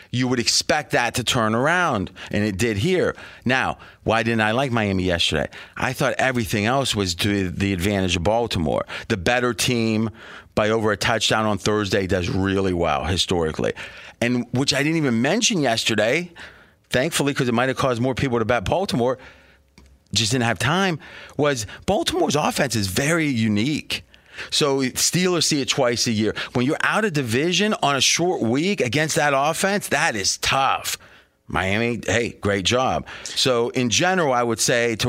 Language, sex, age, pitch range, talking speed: English, male, 30-49, 105-140 Hz, 175 wpm